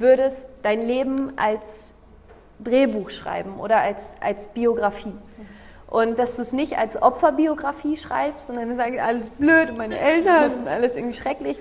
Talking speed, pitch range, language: 140 wpm, 225-275 Hz, German